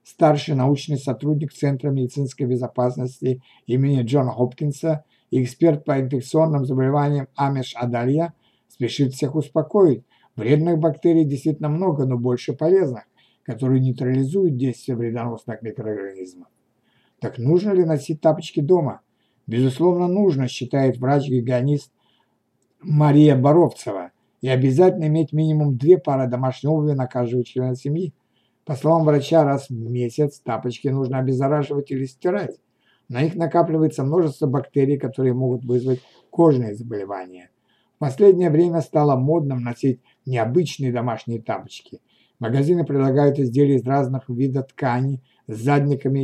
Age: 60-79